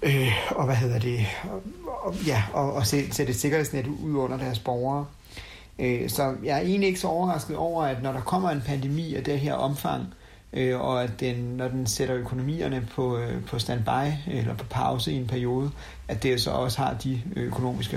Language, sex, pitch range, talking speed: Danish, male, 115-140 Hz, 195 wpm